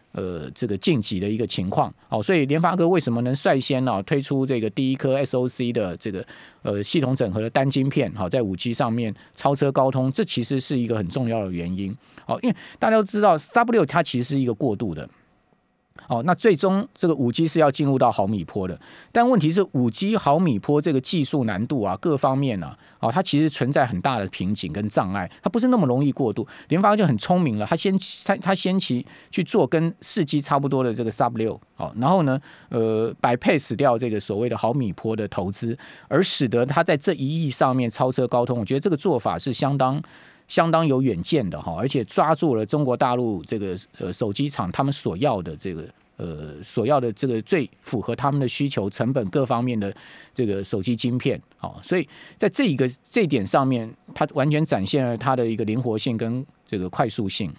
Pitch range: 115-150 Hz